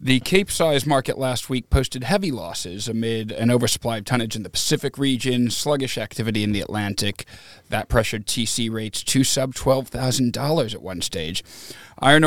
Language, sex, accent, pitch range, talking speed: English, male, American, 105-130 Hz, 165 wpm